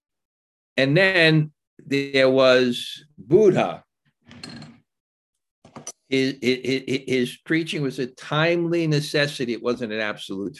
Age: 50-69